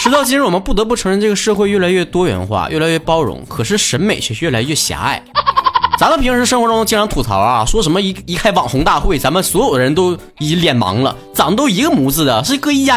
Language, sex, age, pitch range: Chinese, male, 20-39, 160-255 Hz